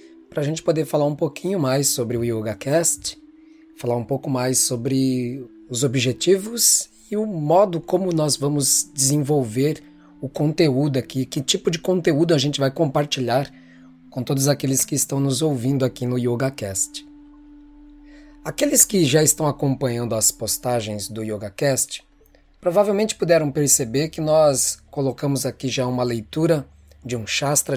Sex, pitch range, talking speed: male, 120-170 Hz, 145 wpm